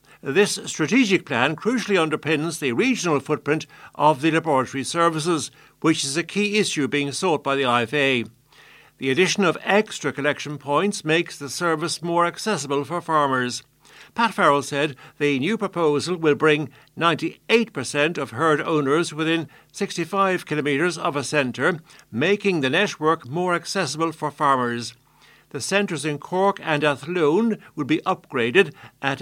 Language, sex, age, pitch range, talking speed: English, male, 60-79, 145-180 Hz, 145 wpm